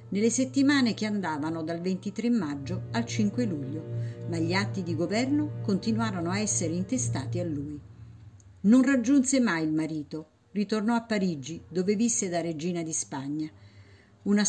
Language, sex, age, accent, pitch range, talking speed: Italian, female, 50-69, native, 145-220 Hz, 150 wpm